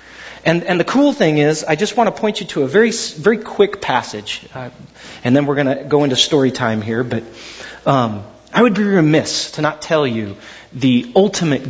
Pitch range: 145-230 Hz